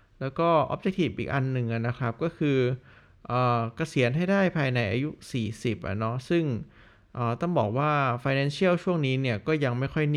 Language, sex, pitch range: Thai, male, 115-145 Hz